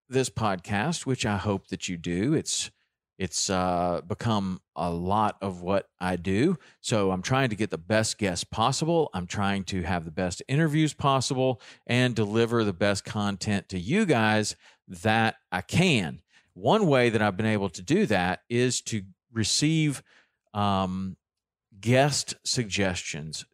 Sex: male